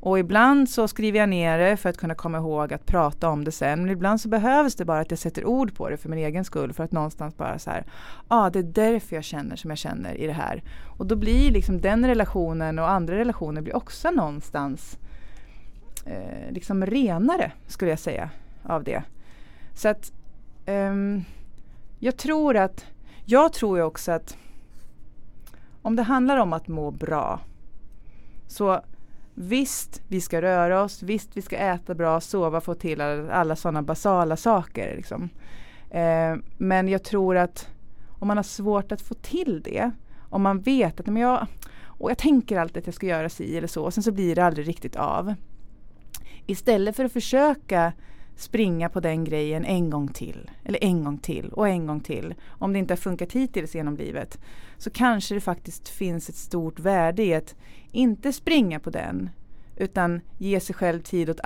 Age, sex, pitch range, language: 30-49, female, 160-215 Hz, Swedish